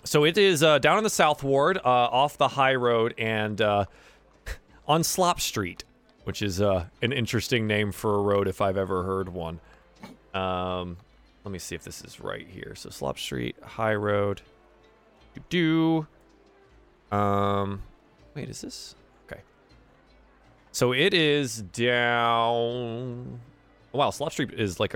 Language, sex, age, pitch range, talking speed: English, male, 20-39, 95-130 Hz, 150 wpm